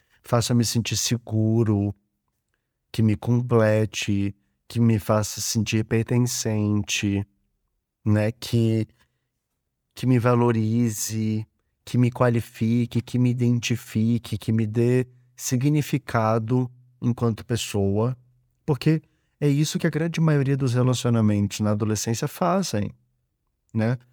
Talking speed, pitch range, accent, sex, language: 100 wpm, 105-125 Hz, Brazilian, male, Portuguese